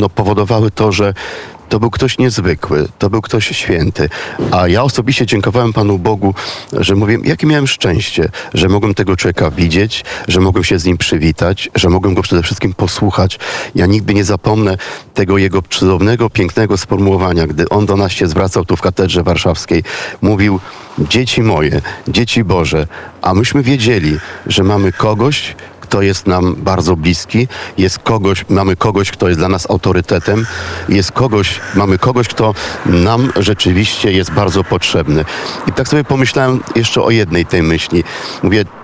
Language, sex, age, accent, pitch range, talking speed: Polish, male, 40-59, native, 90-115 Hz, 160 wpm